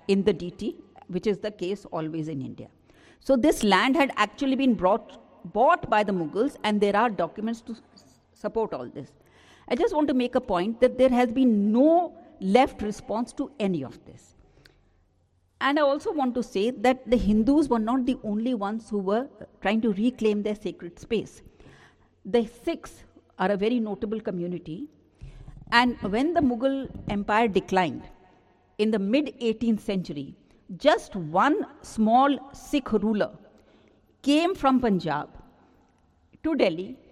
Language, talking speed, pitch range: English, 155 wpm, 200-260 Hz